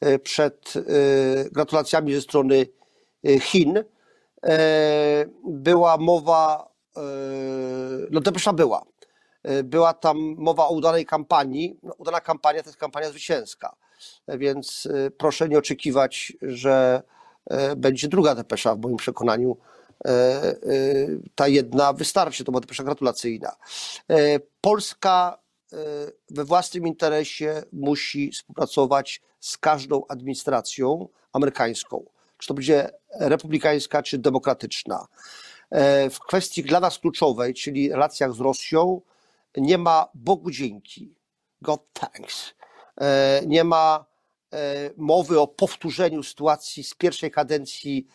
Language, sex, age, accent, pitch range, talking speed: Polish, male, 40-59, native, 135-165 Hz, 100 wpm